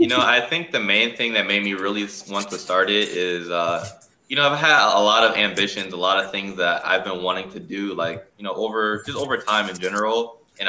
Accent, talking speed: American, 255 wpm